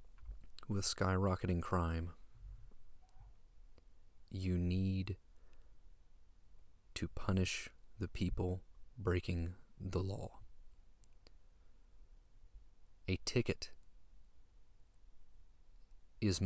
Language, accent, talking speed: English, American, 55 wpm